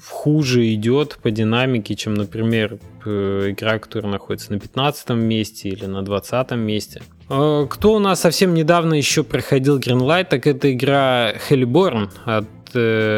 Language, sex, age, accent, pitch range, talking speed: Russian, male, 20-39, native, 105-130 Hz, 130 wpm